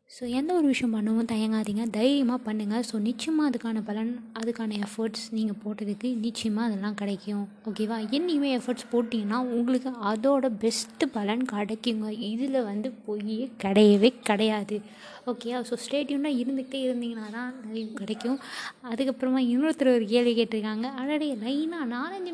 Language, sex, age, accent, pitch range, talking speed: Tamil, female, 20-39, native, 225-260 Hz, 130 wpm